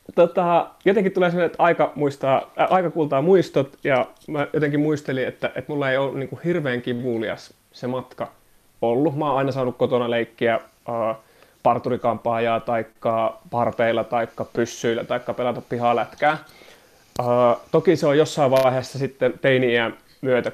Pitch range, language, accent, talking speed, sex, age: 115-140 Hz, Finnish, native, 140 wpm, male, 30-49